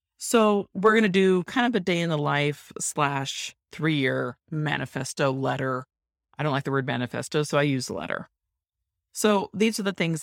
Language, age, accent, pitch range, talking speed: English, 40-59, American, 130-165 Hz, 180 wpm